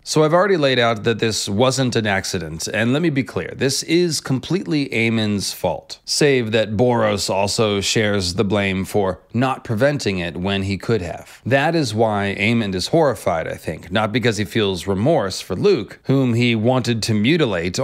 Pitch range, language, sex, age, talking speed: 100-130 Hz, English, male, 30-49, 185 wpm